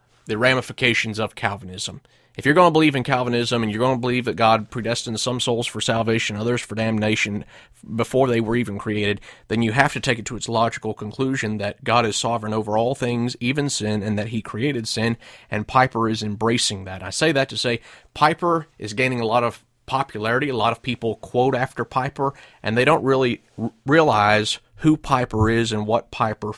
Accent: American